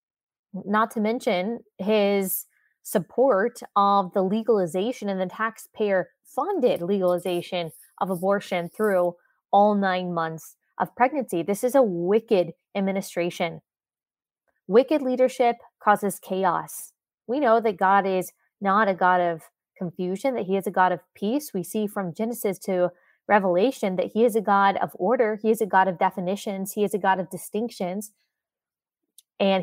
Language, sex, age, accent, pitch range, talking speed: English, female, 20-39, American, 185-220 Hz, 145 wpm